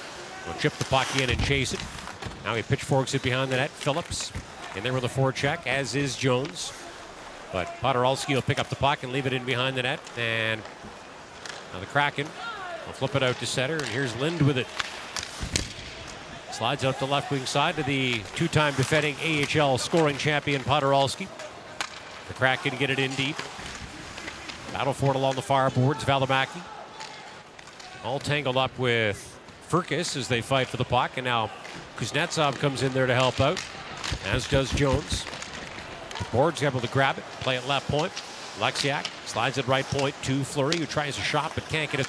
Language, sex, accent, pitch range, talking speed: English, male, American, 125-145 Hz, 180 wpm